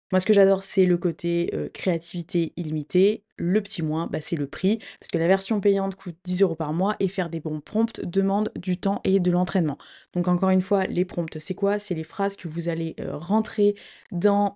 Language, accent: French, French